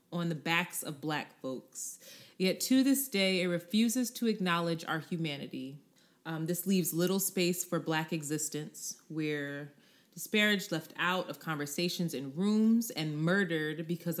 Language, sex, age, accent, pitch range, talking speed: English, female, 20-39, American, 150-185 Hz, 150 wpm